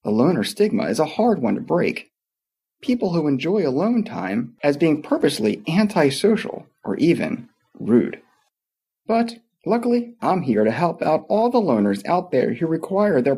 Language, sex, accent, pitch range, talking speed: English, male, American, 145-220 Hz, 160 wpm